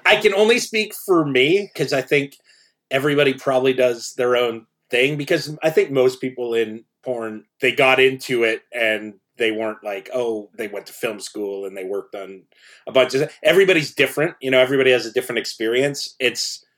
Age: 30-49